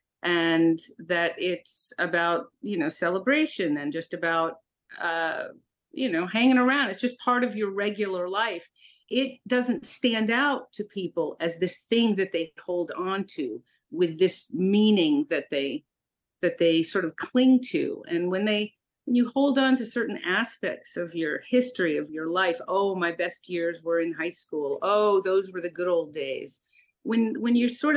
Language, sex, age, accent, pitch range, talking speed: English, female, 40-59, American, 175-255 Hz, 175 wpm